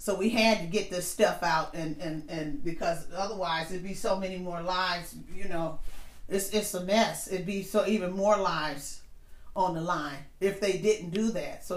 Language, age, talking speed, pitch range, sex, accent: English, 40-59, 205 wpm, 175-210 Hz, female, American